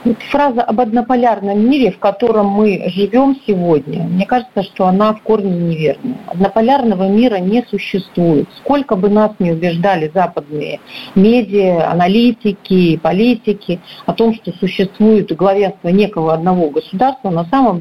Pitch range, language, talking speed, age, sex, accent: 175-230 Hz, Russian, 130 wpm, 50-69, female, native